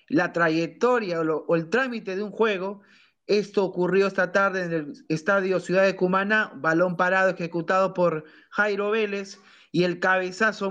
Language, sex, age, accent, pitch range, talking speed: Spanish, male, 30-49, Argentinian, 175-210 Hz, 165 wpm